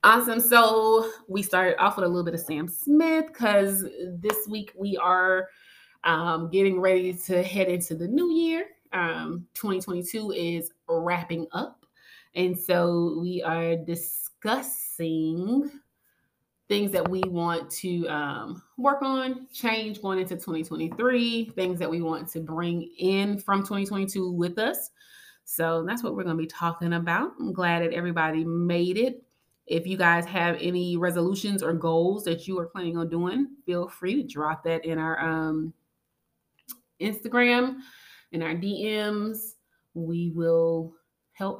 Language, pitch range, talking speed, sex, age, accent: English, 170-215 Hz, 150 wpm, female, 20-39, American